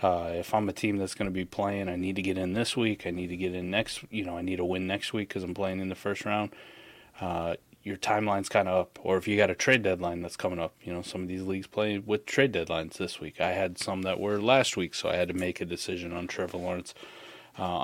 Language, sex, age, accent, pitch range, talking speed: English, male, 20-39, American, 90-105 Hz, 285 wpm